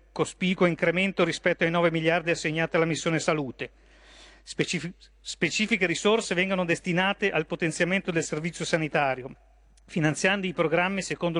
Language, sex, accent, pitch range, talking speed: Italian, male, native, 155-185 Hz, 125 wpm